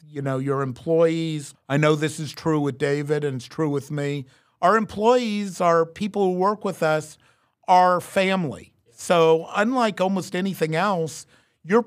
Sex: male